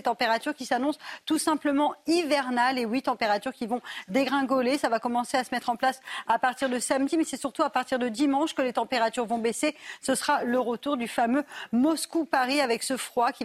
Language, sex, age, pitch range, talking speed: French, female, 40-59, 230-275 Hz, 210 wpm